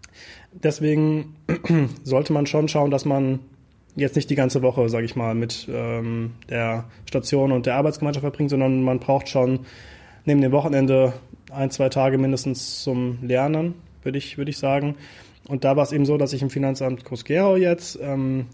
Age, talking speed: 20-39, 175 wpm